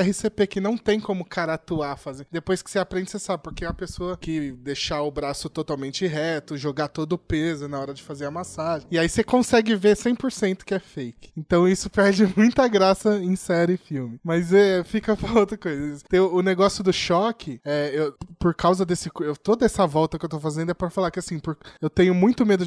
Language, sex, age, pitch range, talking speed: Portuguese, male, 20-39, 145-180 Hz, 230 wpm